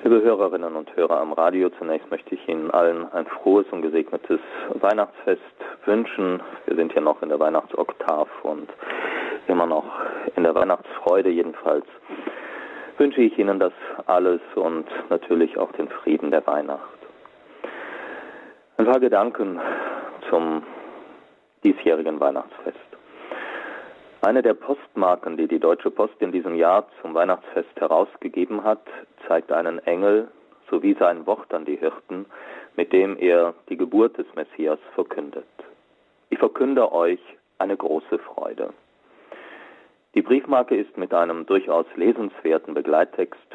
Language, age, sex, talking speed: German, 40-59, male, 130 wpm